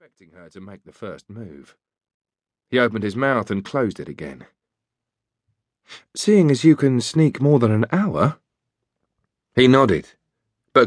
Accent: British